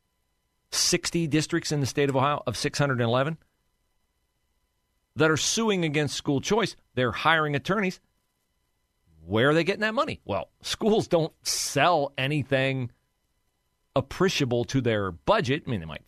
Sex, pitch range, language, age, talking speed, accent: male, 95-145 Hz, English, 40-59, 140 wpm, American